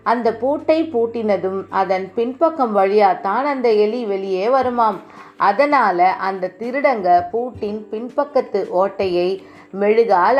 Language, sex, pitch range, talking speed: Tamil, female, 200-250 Hz, 105 wpm